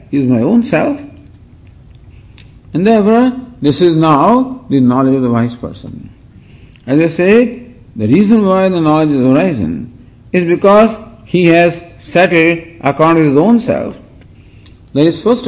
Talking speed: 150 wpm